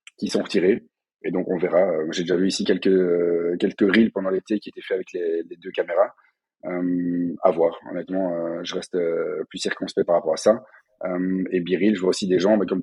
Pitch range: 95-115 Hz